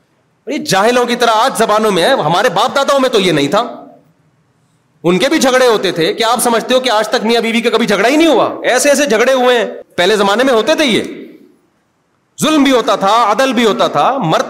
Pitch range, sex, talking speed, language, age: 185-255 Hz, male, 230 wpm, Urdu, 40-59